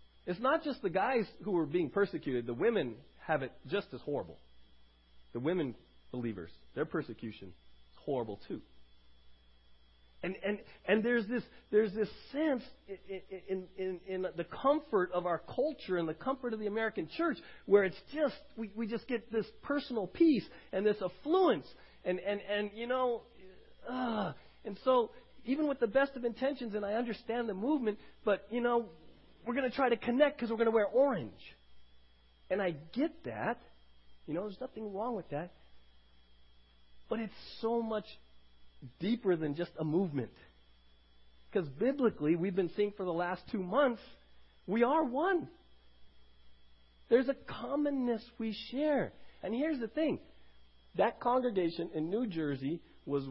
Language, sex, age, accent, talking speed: English, male, 40-59, American, 160 wpm